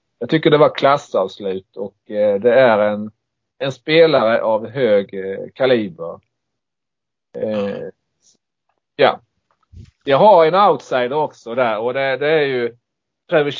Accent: Norwegian